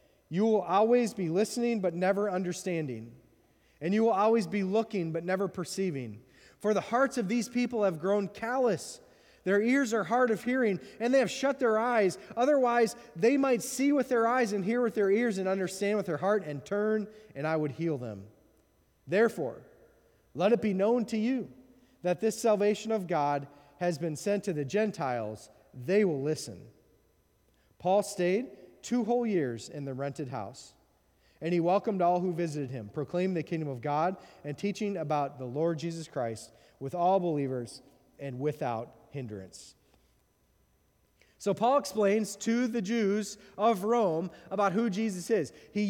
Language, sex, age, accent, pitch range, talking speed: English, male, 30-49, American, 150-225 Hz, 170 wpm